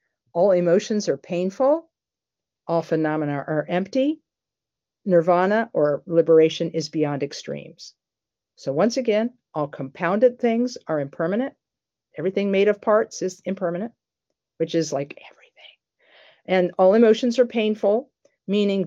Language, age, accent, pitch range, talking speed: English, 50-69, American, 160-210 Hz, 120 wpm